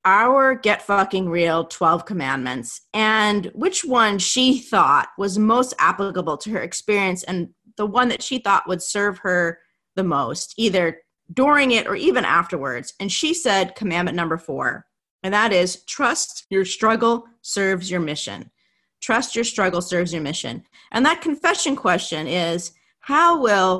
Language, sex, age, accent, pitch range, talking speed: English, female, 30-49, American, 175-230 Hz, 155 wpm